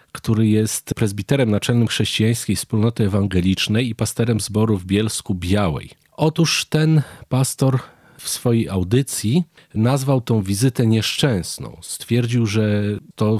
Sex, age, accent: male, 40-59, native